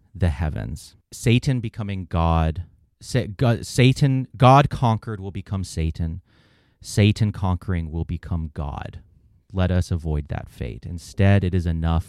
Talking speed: 125 wpm